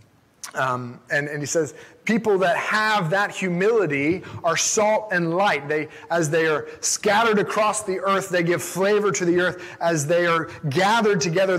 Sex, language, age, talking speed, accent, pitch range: male, English, 30-49, 170 wpm, American, 155-200 Hz